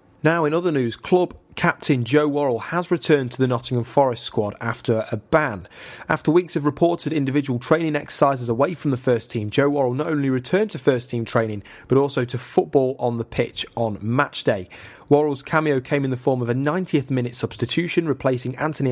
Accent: British